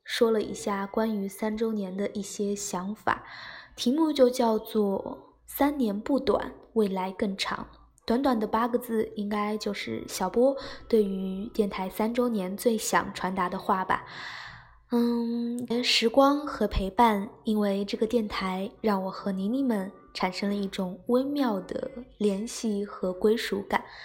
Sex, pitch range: female, 200-245 Hz